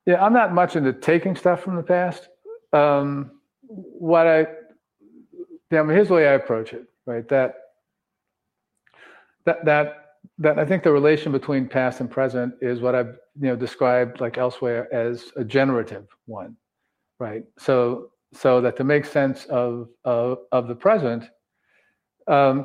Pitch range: 125-150 Hz